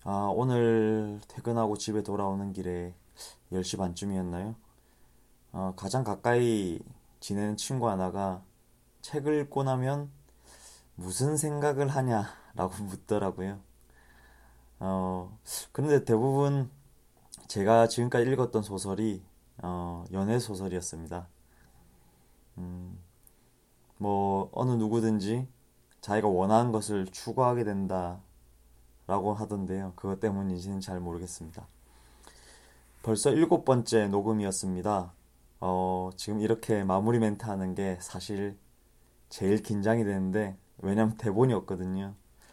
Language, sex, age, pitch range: Korean, male, 20-39, 90-115 Hz